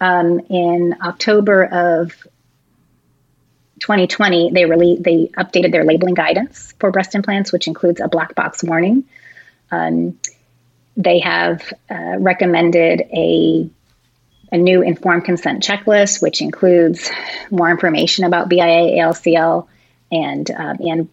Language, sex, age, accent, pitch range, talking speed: English, female, 30-49, American, 165-190 Hz, 120 wpm